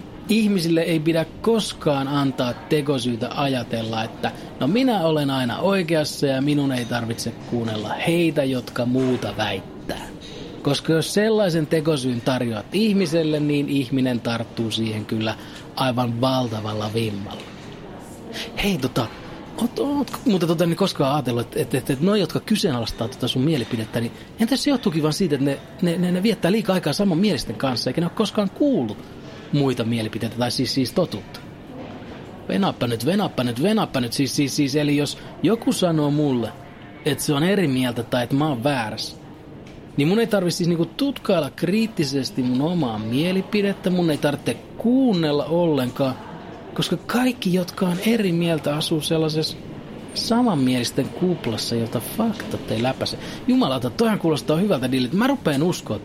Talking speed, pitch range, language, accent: 155 wpm, 125-180 Hz, Finnish, native